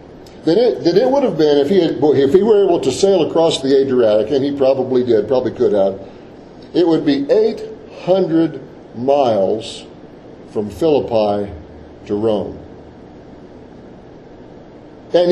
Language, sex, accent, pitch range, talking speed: English, male, American, 105-155 Hz, 135 wpm